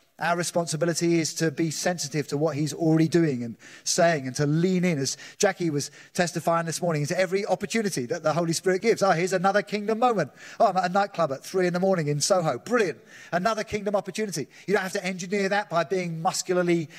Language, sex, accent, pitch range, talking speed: English, male, British, 145-180 Hz, 215 wpm